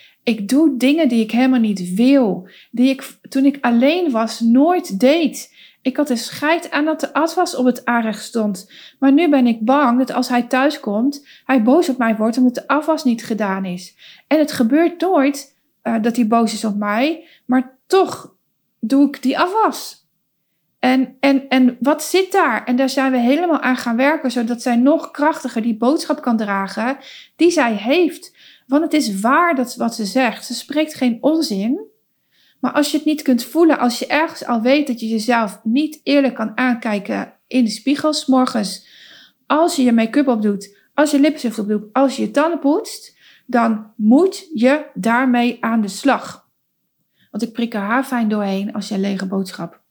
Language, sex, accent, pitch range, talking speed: Dutch, female, Dutch, 230-290 Hz, 190 wpm